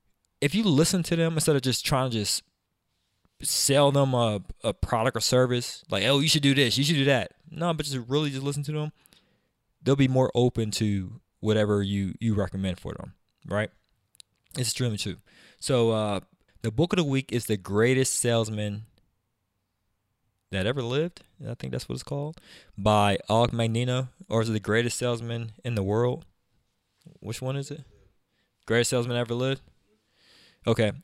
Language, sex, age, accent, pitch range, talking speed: English, male, 20-39, American, 100-125 Hz, 180 wpm